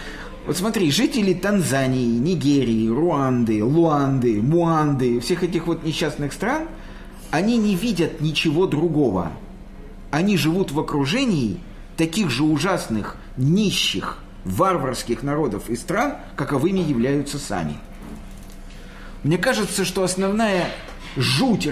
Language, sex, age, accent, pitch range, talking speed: Russian, male, 50-69, native, 135-190 Hz, 105 wpm